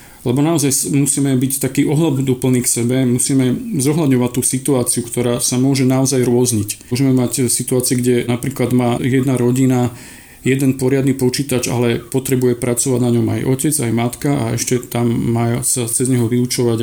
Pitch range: 115-130 Hz